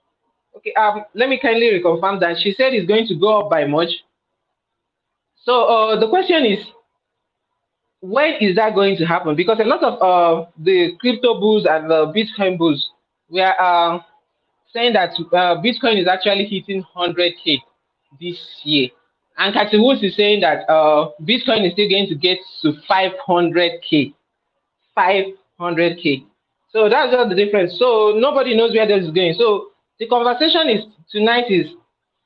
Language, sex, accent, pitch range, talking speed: English, male, Nigerian, 175-240 Hz, 160 wpm